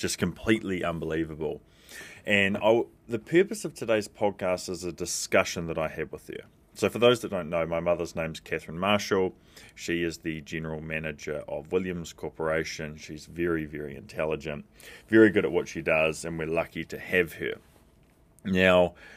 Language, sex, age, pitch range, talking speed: English, male, 30-49, 80-100 Hz, 170 wpm